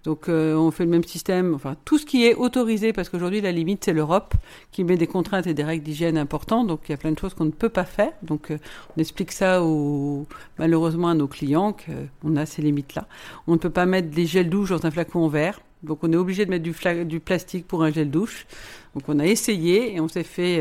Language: French